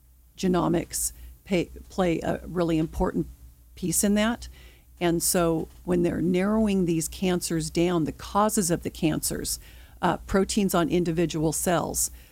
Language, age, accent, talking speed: English, 50-69, American, 125 wpm